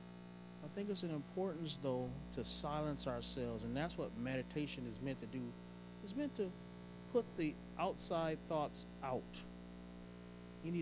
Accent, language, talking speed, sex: American, English, 145 wpm, male